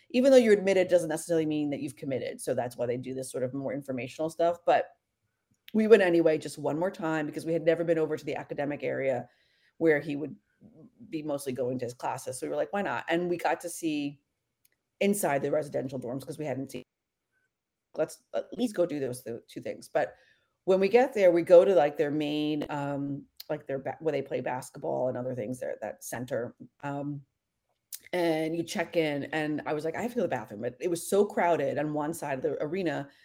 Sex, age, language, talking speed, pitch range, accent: female, 30-49, English, 230 wpm, 140-185 Hz, American